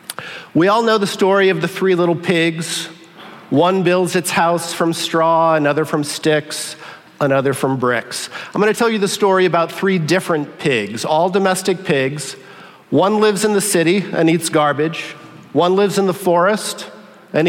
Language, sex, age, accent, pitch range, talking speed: English, male, 50-69, American, 155-195 Hz, 170 wpm